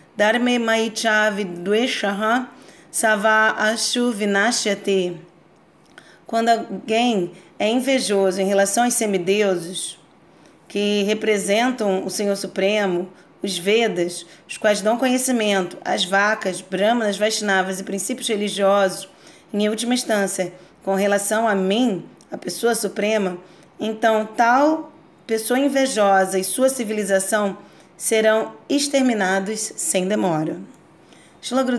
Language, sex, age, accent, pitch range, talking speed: Portuguese, female, 30-49, Brazilian, 195-235 Hz, 100 wpm